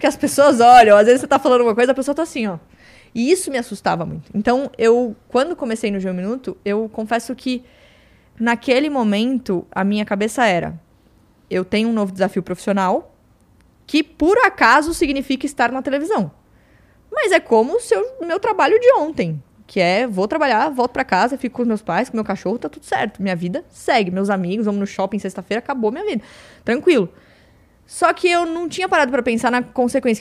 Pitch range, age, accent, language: 200-270 Hz, 20-39, Brazilian, Portuguese